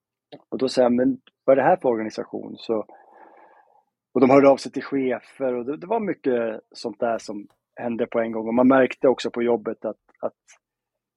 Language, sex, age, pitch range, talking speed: Swedish, male, 30-49, 115-140 Hz, 210 wpm